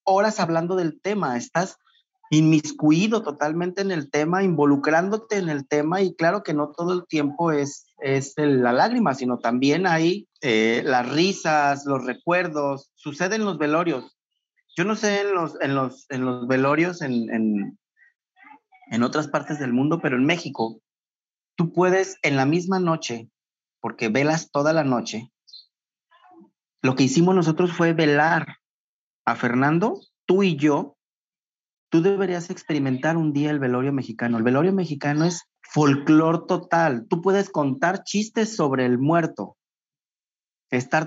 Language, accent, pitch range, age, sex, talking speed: French, Mexican, 145-185 Hz, 40-59, male, 140 wpm